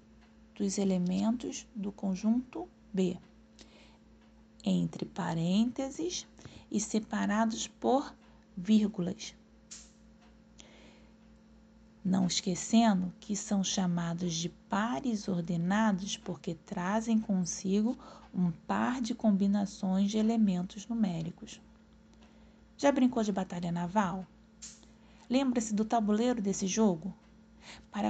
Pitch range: 185-225 Hz